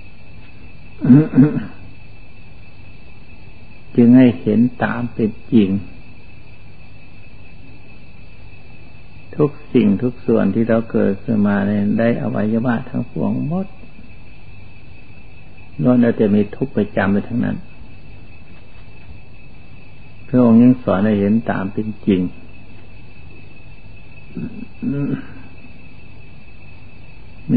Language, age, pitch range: Thai, 60-79, 95-115 Hz